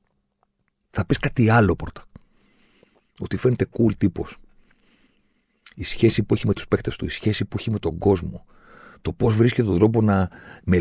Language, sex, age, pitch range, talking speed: Greek, male, 40-59, 95-130 Hz, 180 wpm